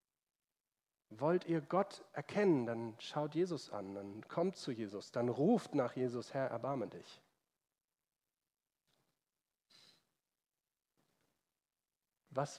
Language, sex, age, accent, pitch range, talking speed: German, male, 40-59, German, 115-160 Hz, 95 wpm